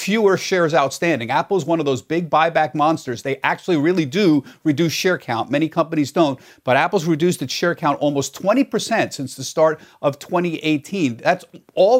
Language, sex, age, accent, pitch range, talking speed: English, male, 50-69, American, 150-190 Hz, 180 wpm